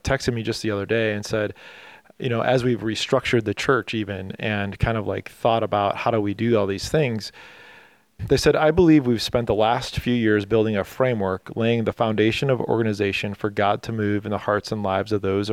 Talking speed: 225 wpm